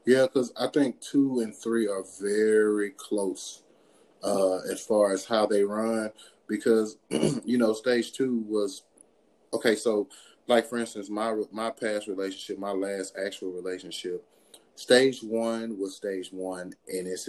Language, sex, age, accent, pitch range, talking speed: English, male, 30-49, American, 95-115 Hz, 150 wpm